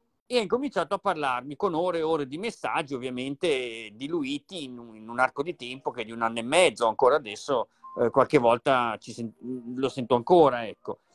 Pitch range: 145-200 Hz